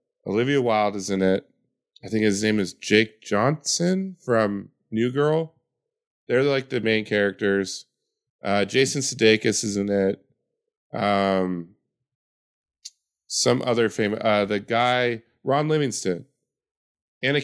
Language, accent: English, American